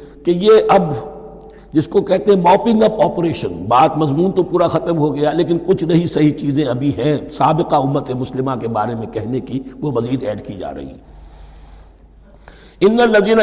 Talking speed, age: 150 wpm, 60-79